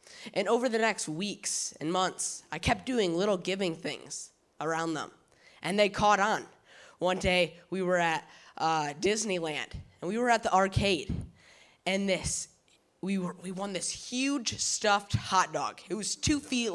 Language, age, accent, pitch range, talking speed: English, 10-29, American, 180-240 Hz, 170 wpm